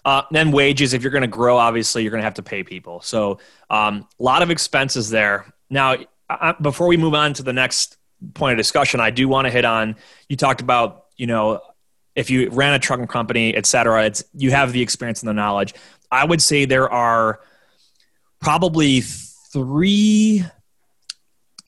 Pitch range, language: 115-145 Hz, English